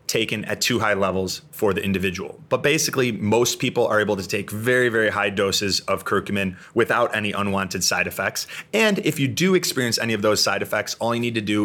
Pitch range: 100-120 Hz